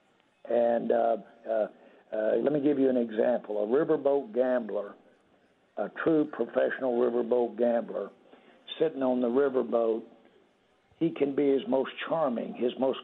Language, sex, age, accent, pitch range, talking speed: English, male, 60-79, American, 115-130 Hz, 140 wpm